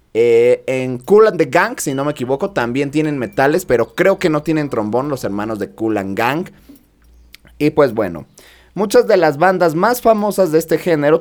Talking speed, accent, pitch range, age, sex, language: 200 wpm, Mexican, 120-185 Hz, 30-49, male, Spanish